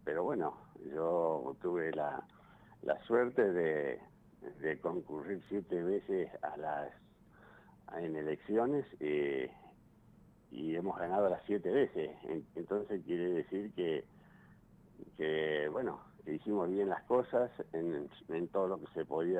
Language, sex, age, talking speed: Spanish, male, 60-79, 125 wpm